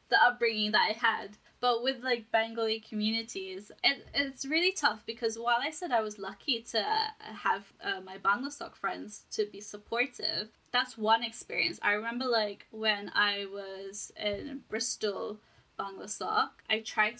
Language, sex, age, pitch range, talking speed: English, female, 10-29, 205-240 Hz, 155 wpm